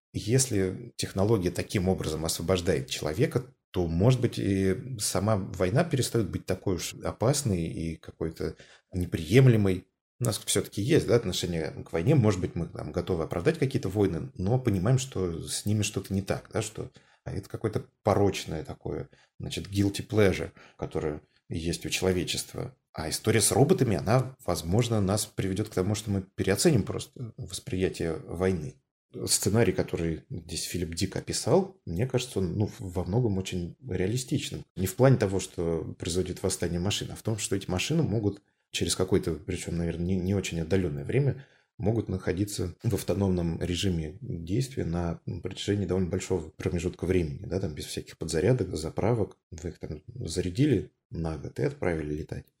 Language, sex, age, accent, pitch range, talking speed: Russian, male, 30-49, native, 90-115 Hz, 155 wpm